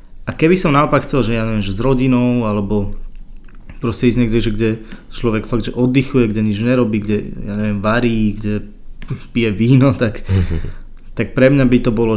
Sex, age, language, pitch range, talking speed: male, 20-39, Slovak, 105-125 Hz, 180 wpm